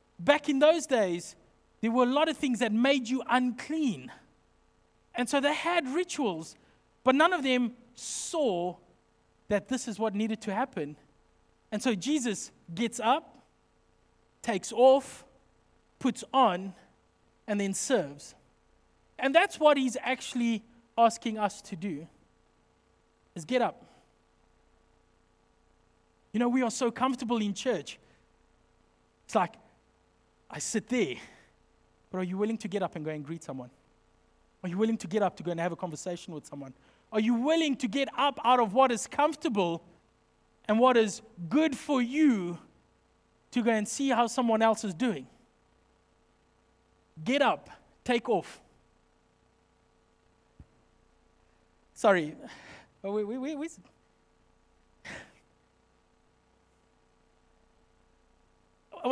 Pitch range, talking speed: 175-260 Hz, 130 wpm